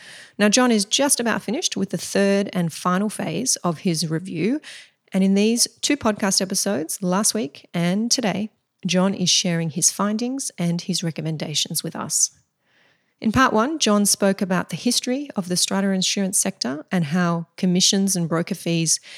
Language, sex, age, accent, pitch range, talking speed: English, female, 30-49, Australian, 175-215 Hz, 170 wpm